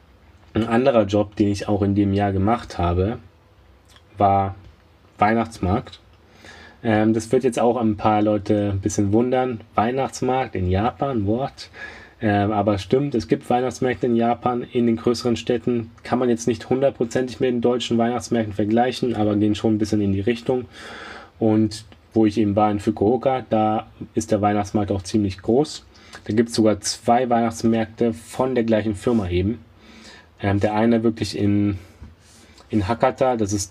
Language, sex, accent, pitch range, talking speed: German, male, German, 100-115 Hz, 160 wpm